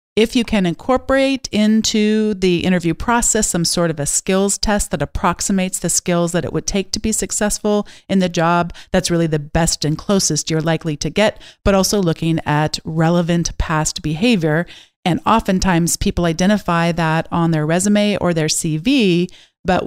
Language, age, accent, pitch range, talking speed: English, 40-59, American, 170-210 Hz, 170 wpm